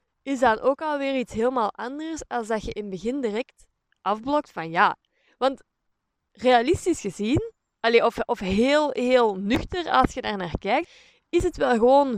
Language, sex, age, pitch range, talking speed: Dutch, female, 20-39, 215-290 Hz, 170 wpm